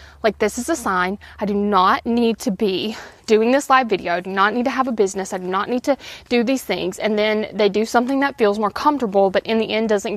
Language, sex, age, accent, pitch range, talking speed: English, female, 20-39, American, 200-245 Hz, 265 wpm